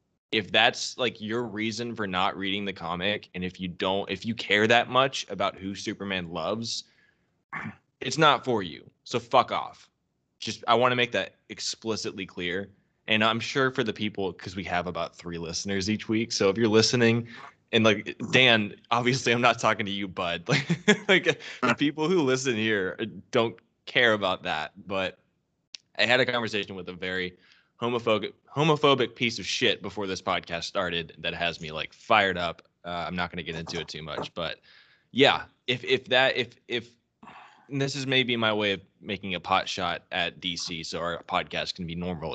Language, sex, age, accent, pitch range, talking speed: English, male, 20-39, American, 95-120 Hz, 190 wpm